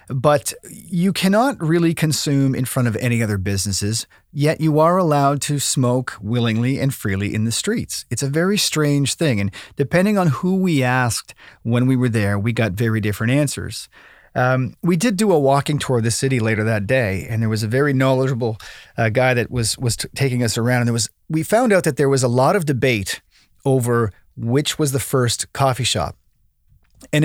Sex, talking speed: male, 205 wpm